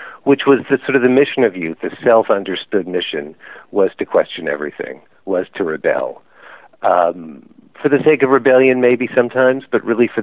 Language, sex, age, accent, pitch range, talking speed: English, male, 50-69, American, 90-130 Hz, 175 wpm